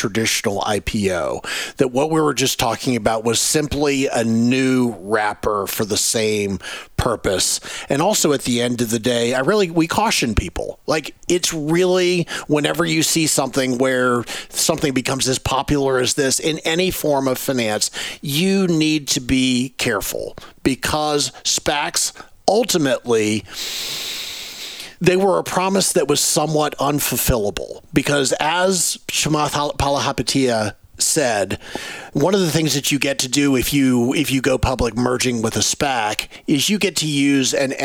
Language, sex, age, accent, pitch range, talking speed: English, male, 40-59, American, 120-160 Hz, 150 wpm